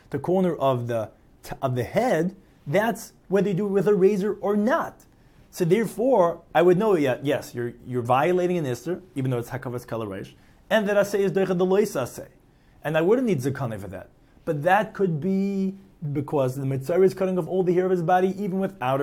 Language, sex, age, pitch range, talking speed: English, male, 30-49, 130-185 Hz, 205 wpm